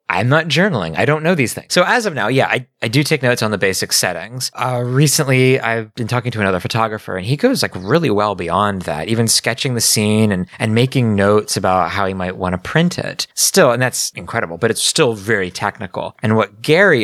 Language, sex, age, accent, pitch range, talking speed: English, male, 20-39, American, 95-130 Hz, 235 wpm